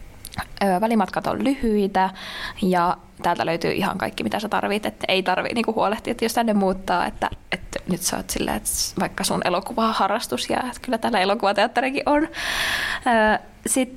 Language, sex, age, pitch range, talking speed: Finnish, female, 20-39, 175-215 Hz, 170 wpm